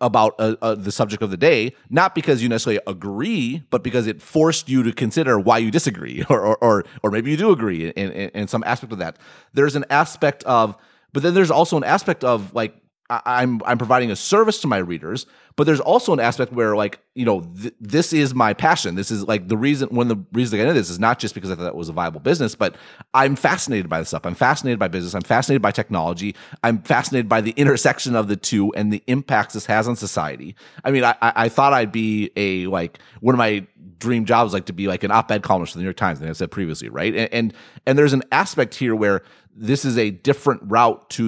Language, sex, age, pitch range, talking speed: English, male, 30-49, 100-135 Hz, 250 wpm